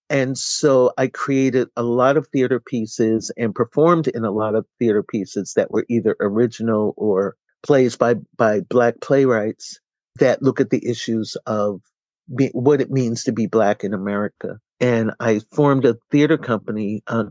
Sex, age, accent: male, 50-69, American